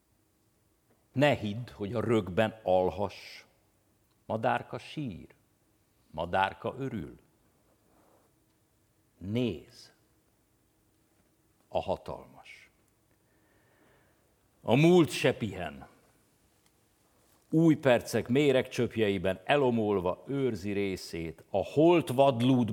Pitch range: 105-140 Hz